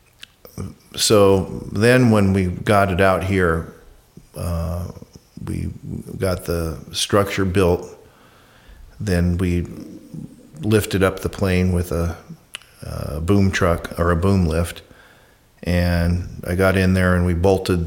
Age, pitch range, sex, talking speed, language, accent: 50-69, 85-100 Hz, male, 125 wpm, English, American